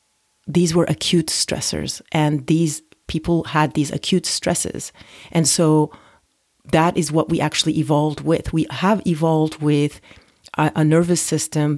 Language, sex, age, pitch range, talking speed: English, female, 40-59, 150-170 Hz, 140 wpm